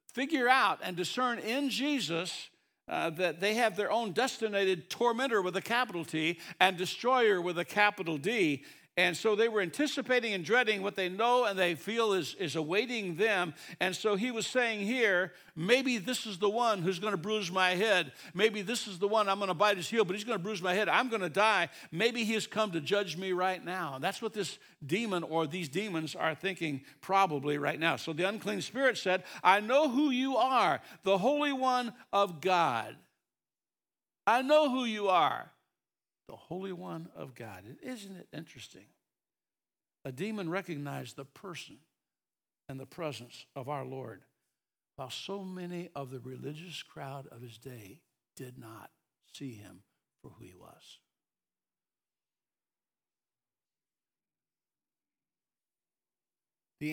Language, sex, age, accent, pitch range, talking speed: English, male, 60-79, American, 150-215 Hz, 170 wpm